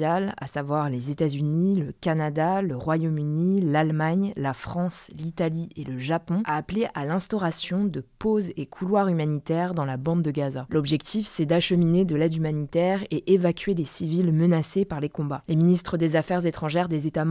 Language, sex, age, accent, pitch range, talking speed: French, female, 20-39, French, 150-180 Hz, 175 wpm